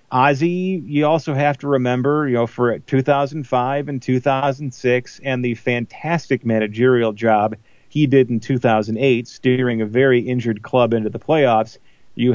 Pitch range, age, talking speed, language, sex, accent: 115-145 Hz, 40-59, 145 wpm, English, male, American